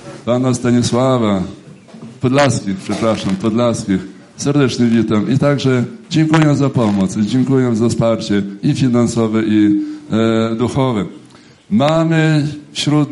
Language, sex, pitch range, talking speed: Polish, male, 105-135 Hz, 100 wpm